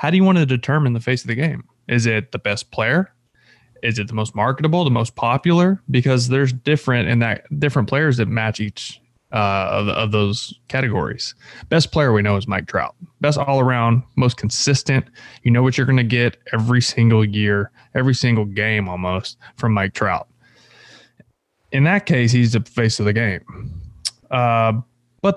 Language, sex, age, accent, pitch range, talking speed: English, male, 20-39, American, 115-145 Hz, 185 wpm